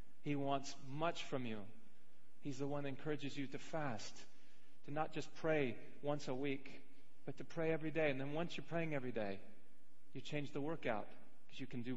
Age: 40-59